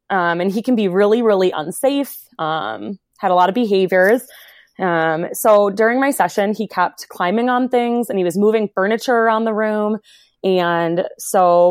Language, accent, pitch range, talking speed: English, American, 180-245 Hz, 175 wpm